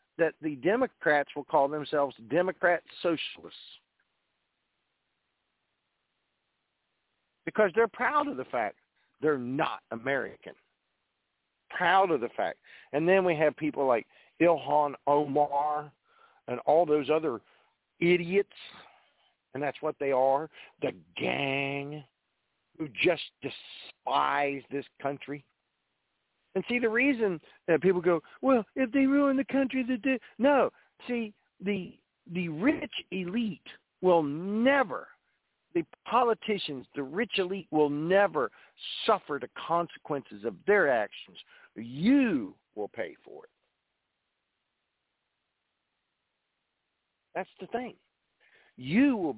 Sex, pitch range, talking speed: male, 145-245 Hz, 115 wpm